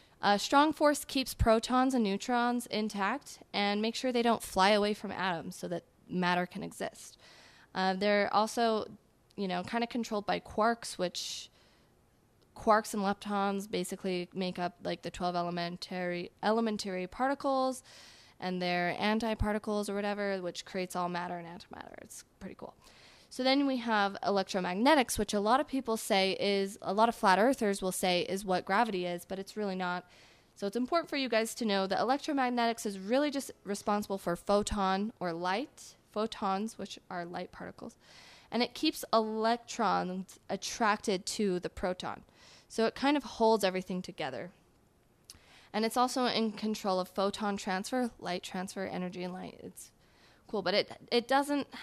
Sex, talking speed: female, 165 wpm